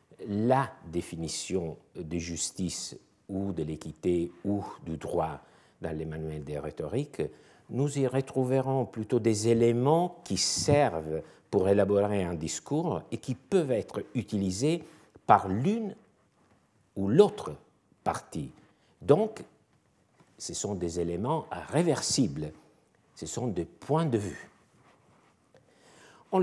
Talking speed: 110 wpm